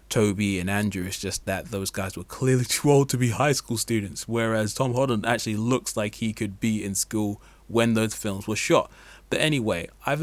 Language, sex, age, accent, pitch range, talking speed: English, male, 20-39, British, 100-115 Hz, 210 wpm